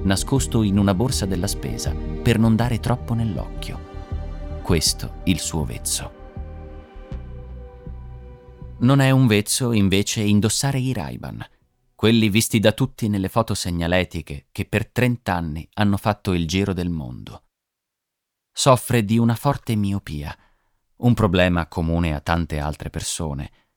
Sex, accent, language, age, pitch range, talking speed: male, native, Italian, 30-49, 80-115 Hz, 130 wpm